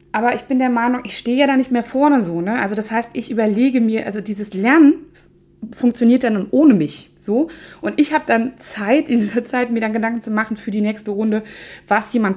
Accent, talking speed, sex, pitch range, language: German, 235 wpm, female, 200-240 Hz, German